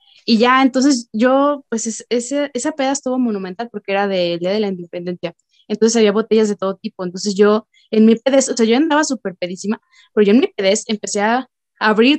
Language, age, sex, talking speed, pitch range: Spanish, 20-39, female, 205 wpm, 205-270 Hz